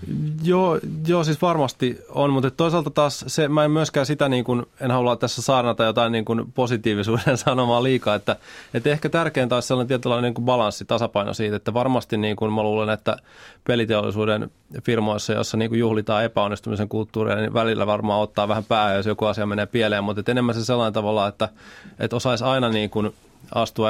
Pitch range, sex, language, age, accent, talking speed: 100-120 Hz, male, Finnish, 20-39, native, 185 wpm